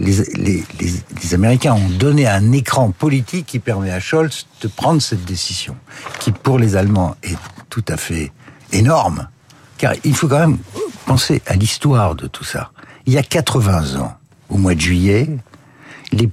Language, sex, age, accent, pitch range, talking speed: French, male, 60-79, French, 100-140 Hz, 175 wpm